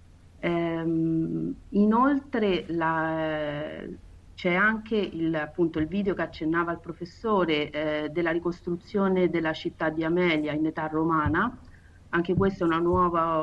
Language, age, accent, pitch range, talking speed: Italian, 40-59, native, 160-190 Hz, 120 wpm